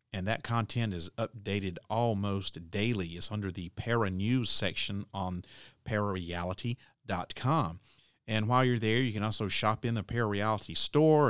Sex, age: male, 40-59